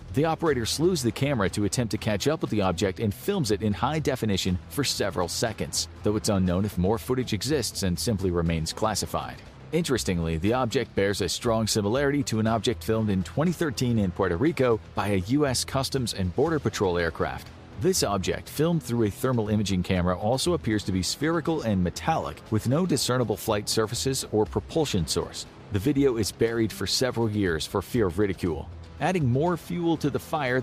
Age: 40-59